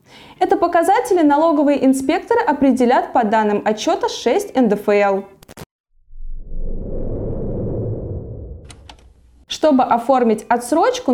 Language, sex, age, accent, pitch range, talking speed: Russian, female, 20-39, native, 220-300 Hz, 70 wpm